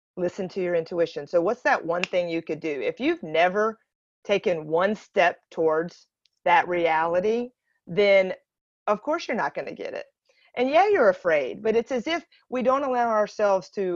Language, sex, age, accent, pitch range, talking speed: English, female, 40-59, American, 175-255 Hz, 185 wpm